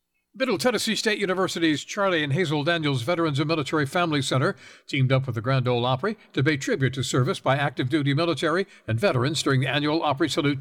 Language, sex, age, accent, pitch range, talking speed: English, male, 60-79, American, 130-175 Hz, 205 wpm